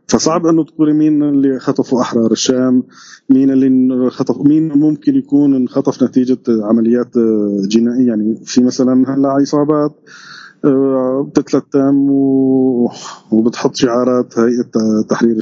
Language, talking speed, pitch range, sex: Arabic, 115 wpm, 120-145 Hz, male